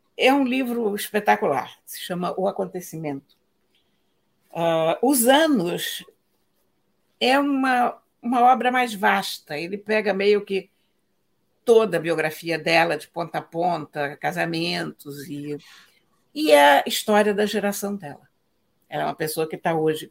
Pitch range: 155-215 Hz